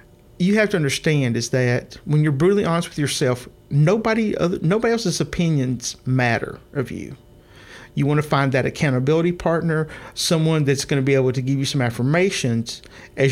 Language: English